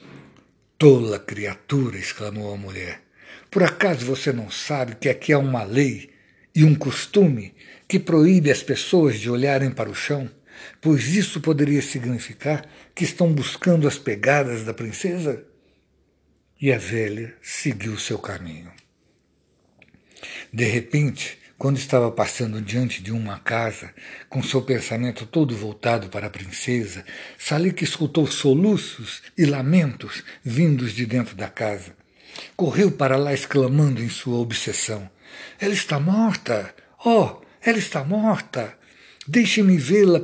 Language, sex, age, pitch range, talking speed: Portuguese, male, 60-79, 105-155 Hz, 130 wpm